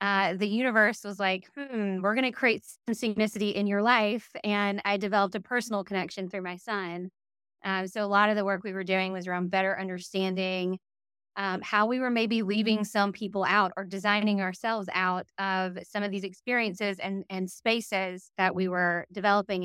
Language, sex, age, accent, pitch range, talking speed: English, female, 20-39, American, 185-210 Hz, 190 wpm